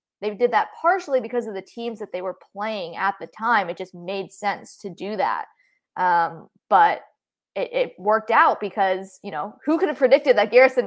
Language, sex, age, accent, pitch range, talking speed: English, female, 20-39, American, 195-240 Hz, 205 wpm